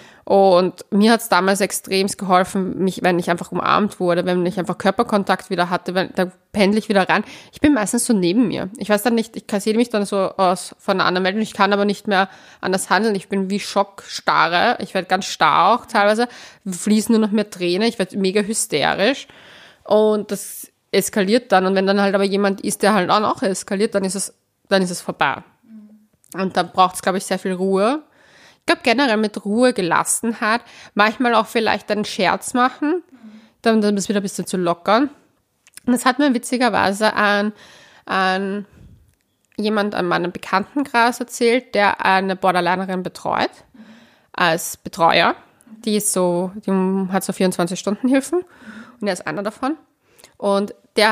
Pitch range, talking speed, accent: 190-225 Hz, 185 wpm, German